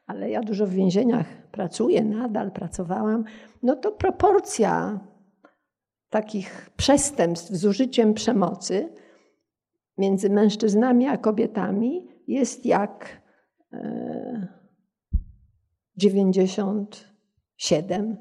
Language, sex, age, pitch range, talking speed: Polish, female, 50-69, 200-255 Hz, 75 wpm